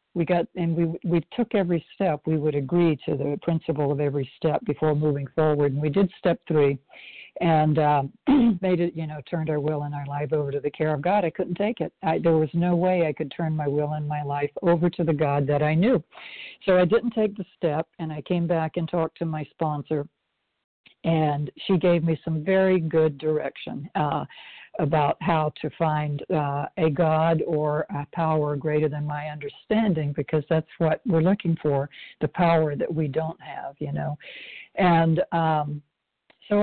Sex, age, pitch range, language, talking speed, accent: female, 60-79, 155-175 Hz, English, 200 wpm, American